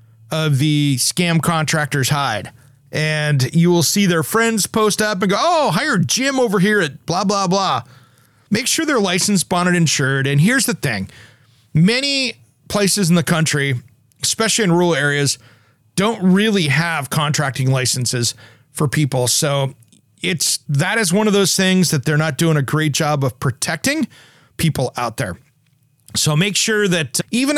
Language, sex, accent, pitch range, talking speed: English, male, American, 140-195 Hz, 165 wpm